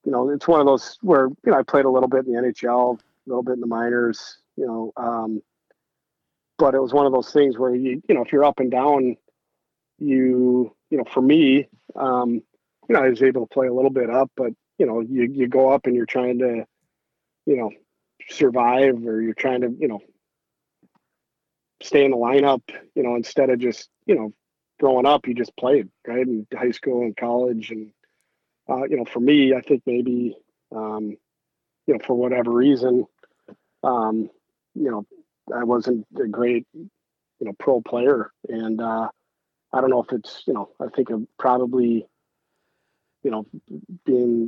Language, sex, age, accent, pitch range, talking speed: English, male, 40-59, American, 115-130 Hz, 185 wpm